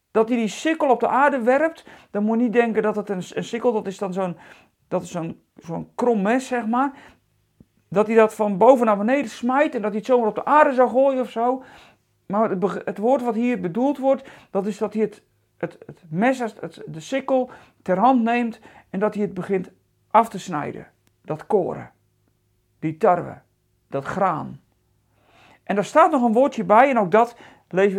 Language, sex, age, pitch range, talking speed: Dutch, male, 40-59, 190-260 Hz, 205 wpm